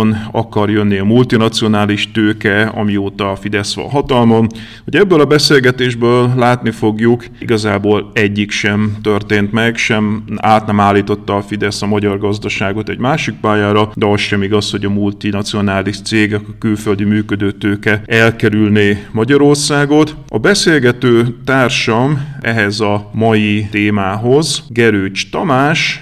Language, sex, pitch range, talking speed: Hungarian, male, 105-115 Hz, 125 wpm